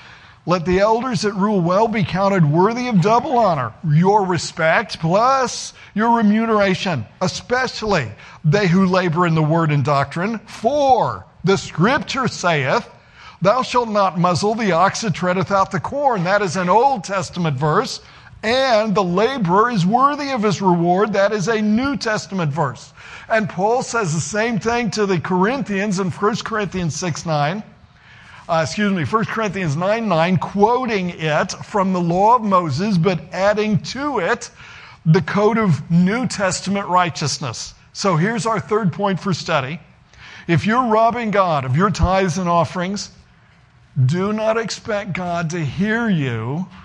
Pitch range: 165-215 Hz